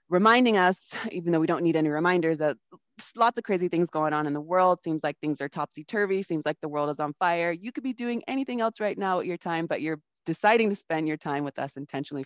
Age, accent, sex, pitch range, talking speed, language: 20-39, American, female, 155-185 Hz, 255 wpm, English